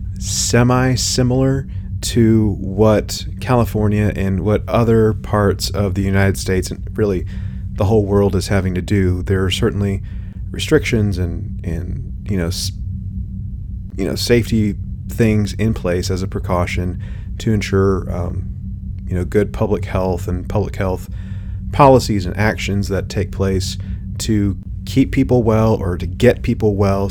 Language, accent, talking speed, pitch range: English, American, 140 wpm, 95-110 Hz